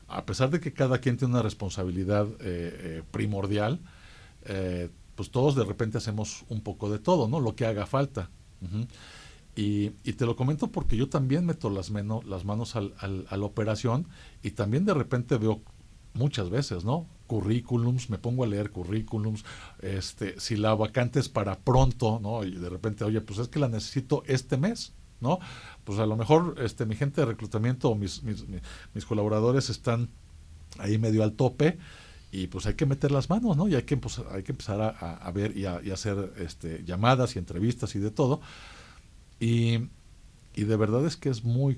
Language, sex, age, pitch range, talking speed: Spanish, male, 50-69, 95-120 Hz, 190 wpm